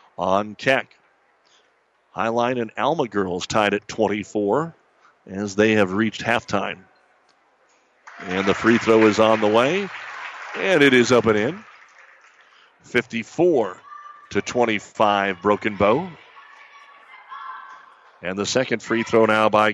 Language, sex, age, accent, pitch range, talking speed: English, male, 50-69, American, 105-130 Hz, 120 wpm